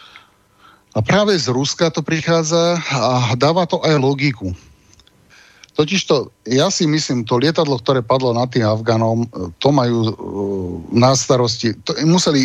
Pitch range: 110-140 Hz